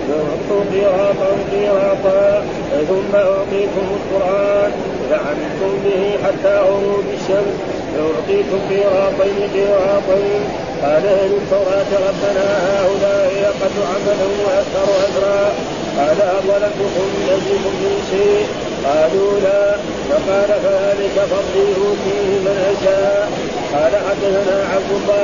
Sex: male